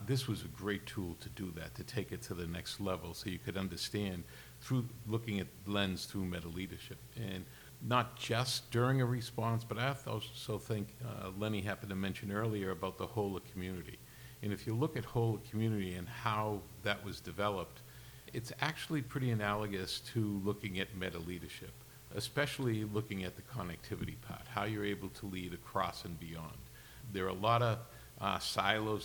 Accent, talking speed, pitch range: American, 180 wpm, 95-115 Hz